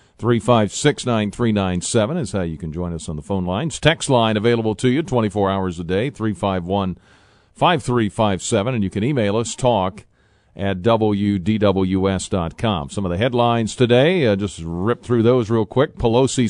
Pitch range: 100-125 Hz